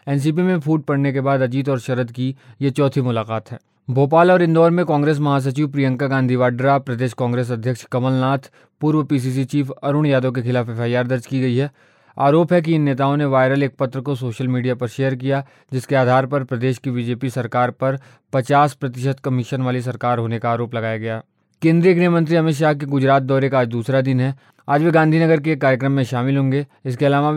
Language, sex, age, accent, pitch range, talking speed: Hindi, male, 20-39, native, 125-140 Hz, 210 wpm